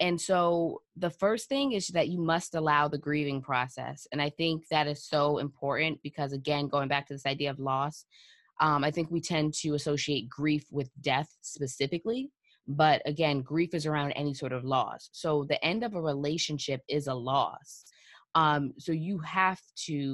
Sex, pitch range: female, 135-155 Hz